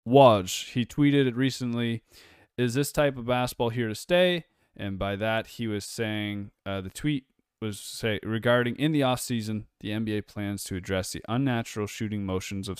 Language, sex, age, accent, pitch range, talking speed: English, male, 20-39, American, 90-115 Hz, 175 wpm